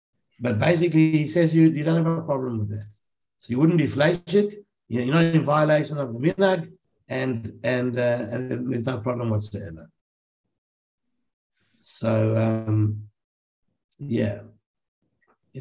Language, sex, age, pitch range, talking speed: English, male, 60-79, 115-155 Hz, 145 wpm